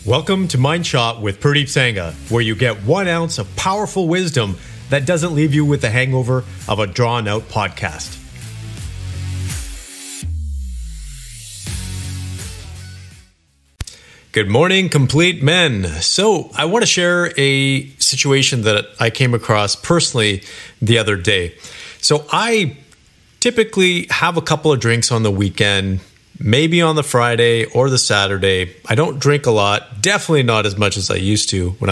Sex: male